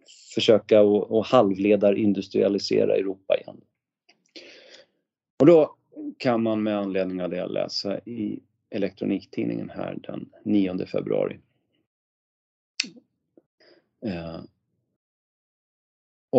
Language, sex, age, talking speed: Swedish, male, 40-59, 85 wpm